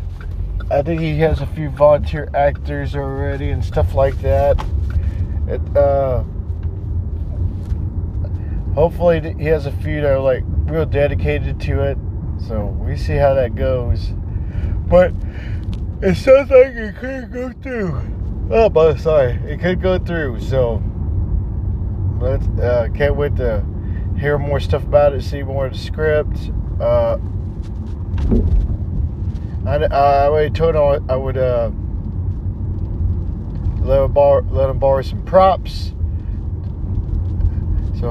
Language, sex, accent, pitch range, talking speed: English, male, American, 85-105 Hz, 130 wpm